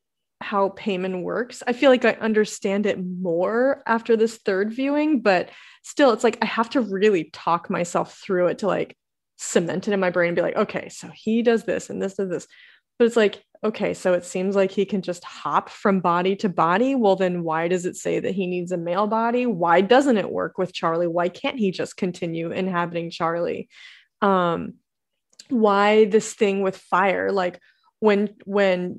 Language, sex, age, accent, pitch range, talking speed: English, female, 20-39, American, 180-220 Hz, 195 wpm